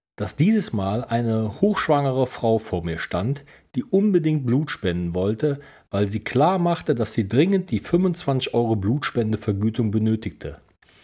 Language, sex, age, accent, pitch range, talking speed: German, male, 40-59, German, 100-150 Hz, 140 wpm